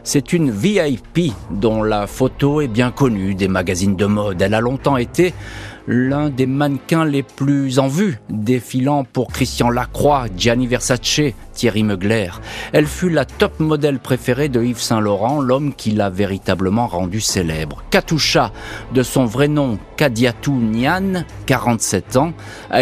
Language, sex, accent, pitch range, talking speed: French, male, French, 100-135 Hz, 150 wpm